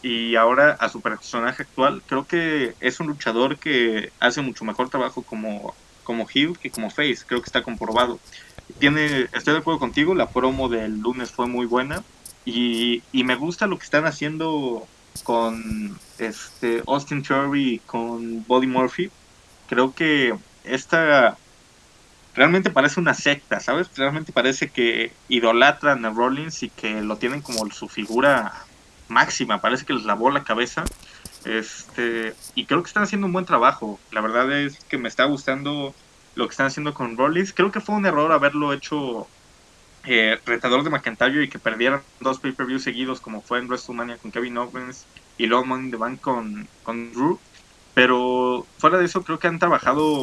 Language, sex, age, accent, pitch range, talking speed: Spanish, male, 20-39, Mexican, 120-145 Hz, 175 wpm